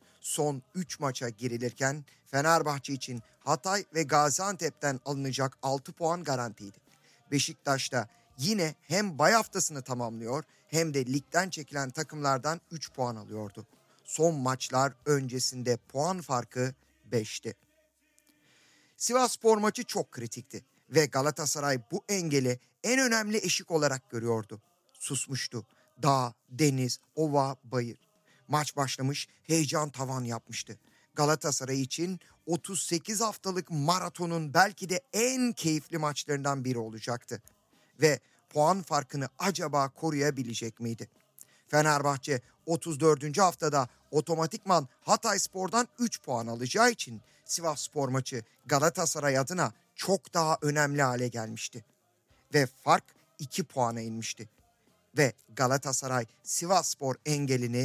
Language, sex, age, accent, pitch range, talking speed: Turkish, male, 50-69, native, 125-165 Hz, 110 wpm